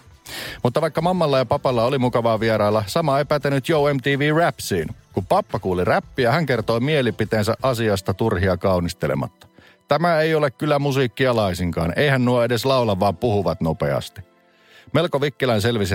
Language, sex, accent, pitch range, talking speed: Finnish, male, native, 90-120 Hz, 145 wpm